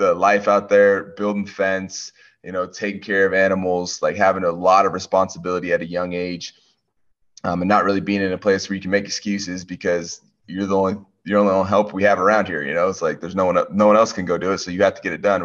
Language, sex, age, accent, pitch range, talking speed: English, male, 20-39, American, 90-105 Hz, 265 wpm